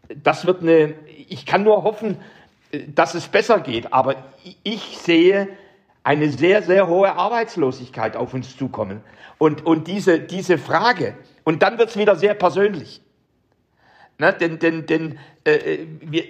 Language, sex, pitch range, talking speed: German, male, 160-200 Hz, 145 wpm